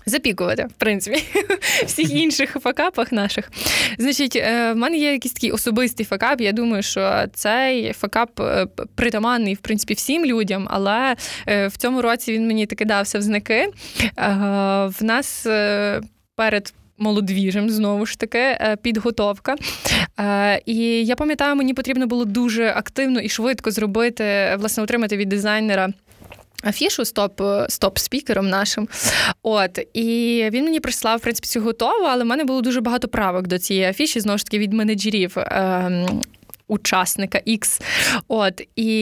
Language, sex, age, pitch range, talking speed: Ukrainian, female, 20-39, 205-250 Hz, 145 wpm